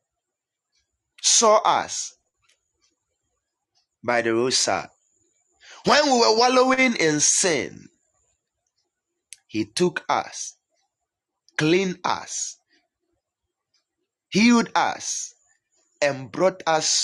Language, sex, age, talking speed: English, male, 30-49, 75 wpm